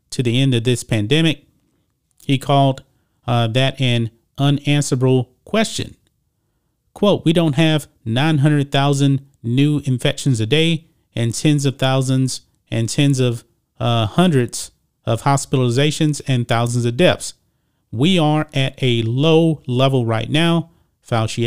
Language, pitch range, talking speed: English, 115-145 Hz, 130 wpm